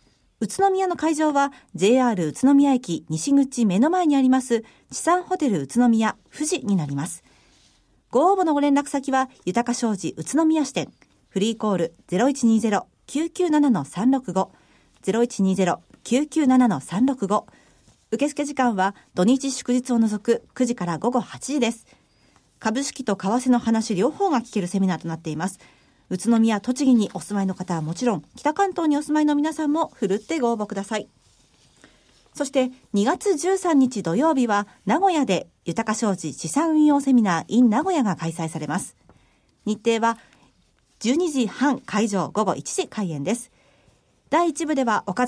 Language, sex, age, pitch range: Japanese, female, 50-69, 200-280 Hz